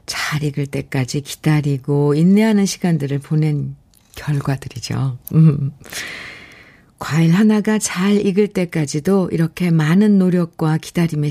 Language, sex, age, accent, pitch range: Korean, female, 50-69, native, 155-215 Hz